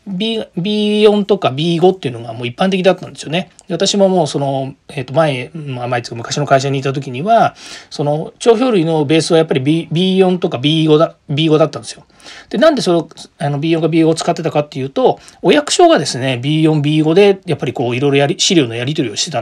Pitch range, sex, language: 145-195 Hz, male, Japanese